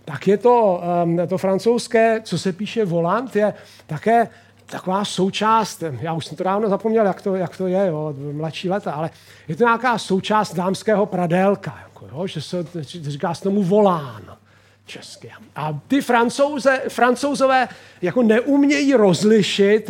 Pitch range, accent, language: 165-230 Hz, native, Czech